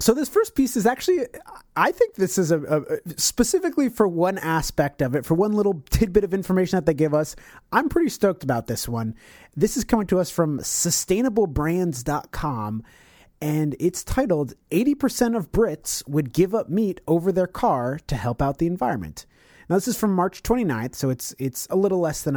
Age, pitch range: 30-49, 135-205 Hz